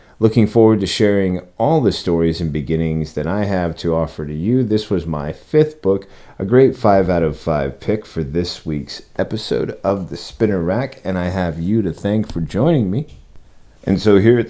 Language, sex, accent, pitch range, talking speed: English, male, American, 75-105 Hz, 205 wpm